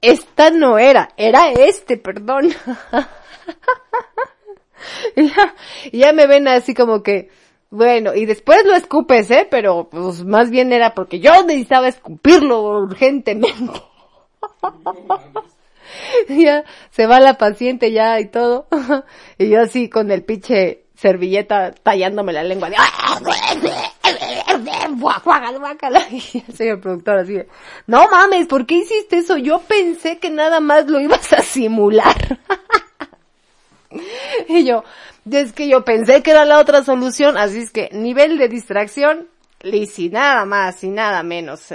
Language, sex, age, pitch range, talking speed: Spanish, female, 30-49, 215-305 Hz, 135 wpm